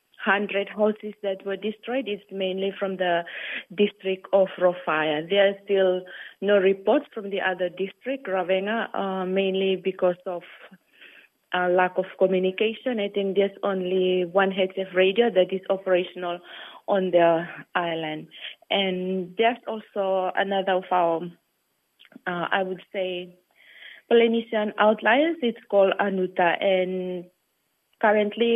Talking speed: 130 wpm